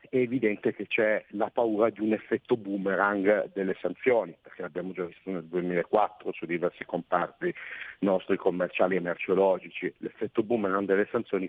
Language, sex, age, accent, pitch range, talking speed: Italian, male, 50-69, native, 90-105 Hz, 150 wpm